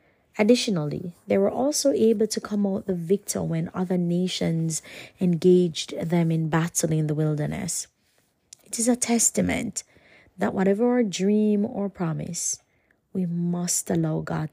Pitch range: 155-190 Hz